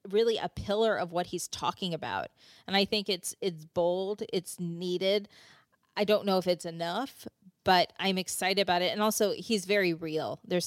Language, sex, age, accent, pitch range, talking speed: English, female, 30-49, American, 175-230 Hz, 185 wpm